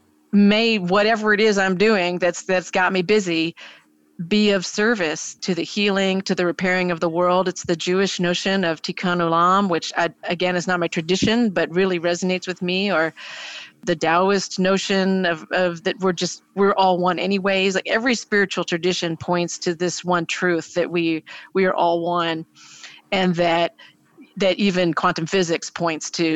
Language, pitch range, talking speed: English, 170-195 Hz, 180 wpm